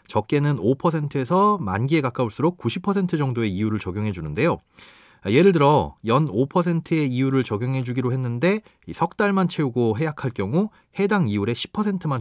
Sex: male